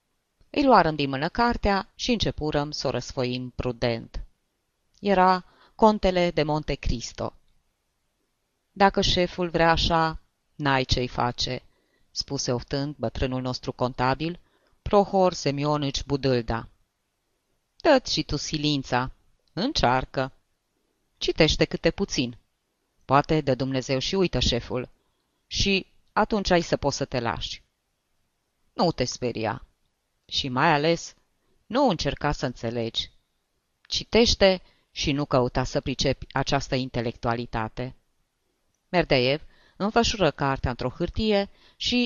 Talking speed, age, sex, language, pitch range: 110 wpm, 30-49, female, Romanian, 125-175 Hz